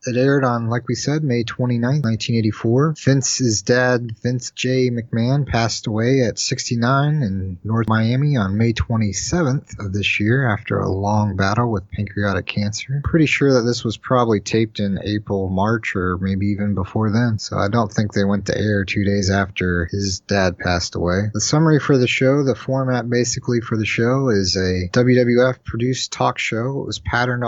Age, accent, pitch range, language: 30-49, American, 100-125 Hz, English